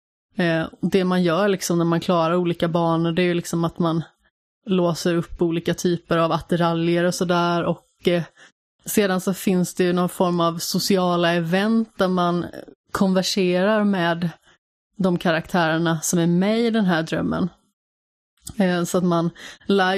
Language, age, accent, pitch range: Swedish, 20-39, native, 170-185 Hz